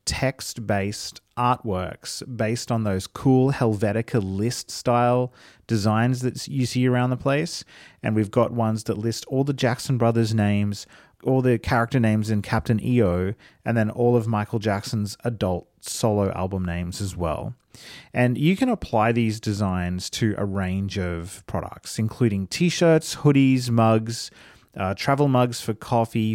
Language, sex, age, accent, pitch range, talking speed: English, male, 30-49, Australian, 105-125 Hz, 150 wpm